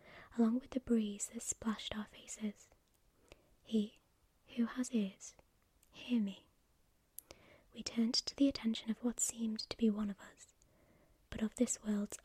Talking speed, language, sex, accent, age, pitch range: 150 wpm, English, female, British, 20-39, 210-240 Hz